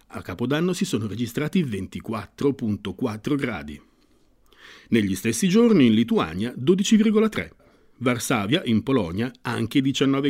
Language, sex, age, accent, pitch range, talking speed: Italian, male, 50-69, native, 115-155 Hz, 105 wpm